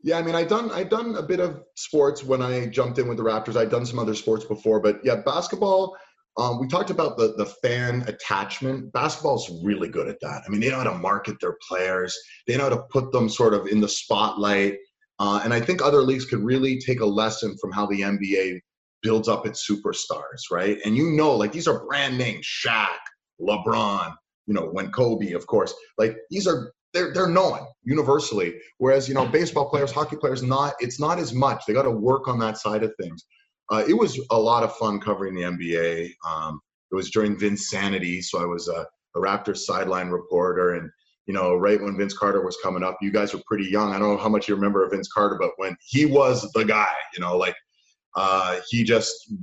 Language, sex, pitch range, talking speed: English, male, 100-140 Hz, 220 wpm